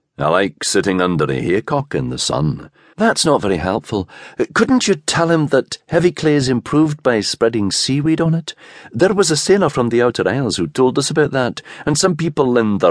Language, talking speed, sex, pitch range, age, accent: English, 210 wpm, male, 120-175 Hz, 50-69, British